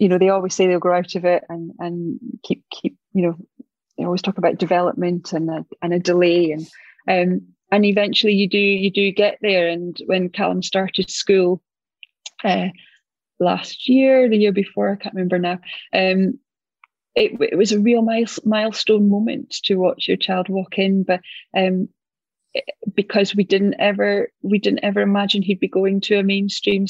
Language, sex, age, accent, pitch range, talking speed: English, female, 30-49, British, 175-200 Hz, 180 wpm